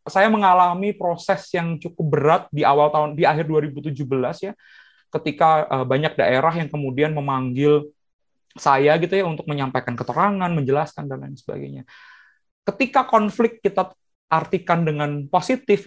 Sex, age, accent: male, 30-49, native